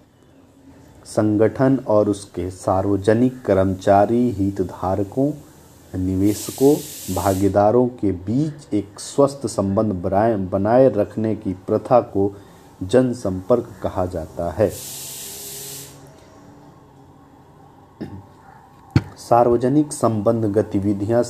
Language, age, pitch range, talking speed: Hindi, 40-59, 100-125 Hz, 70 wpm